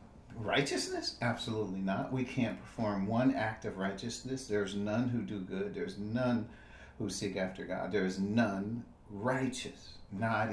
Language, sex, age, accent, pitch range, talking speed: English, male, 50-69, American, 95-135 Hz, 140 wpm